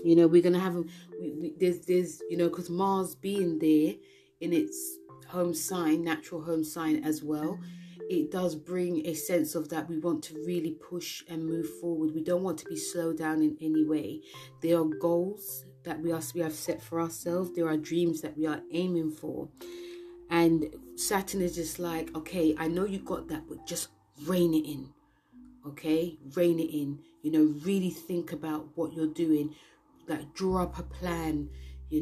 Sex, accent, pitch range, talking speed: female, British, 155-175 Hz, 190 wpm